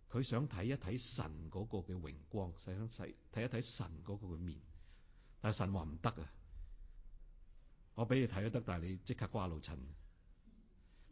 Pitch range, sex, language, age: 85-125 Hz, male, Chinese, 60-79